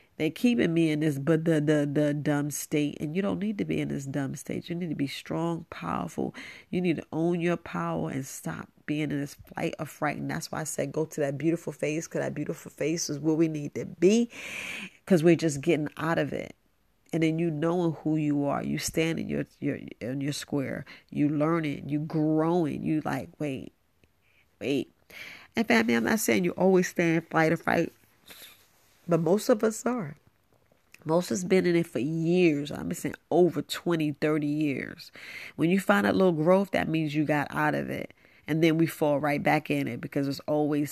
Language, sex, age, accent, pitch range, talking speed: English, female, 40-59, American, 145-175 Hz, 215 wpm